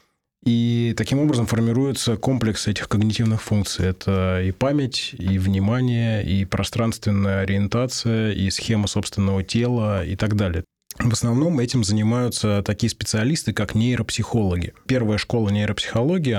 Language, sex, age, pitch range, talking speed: Russian, male, 20-39, 100-120 Hz, 125 wpm